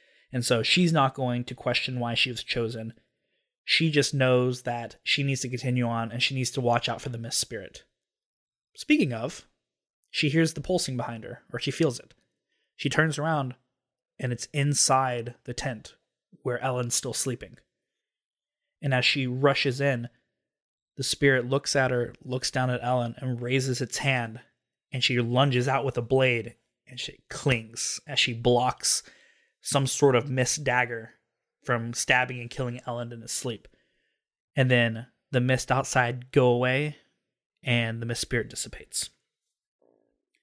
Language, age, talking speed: English, 20-39, 165 wpm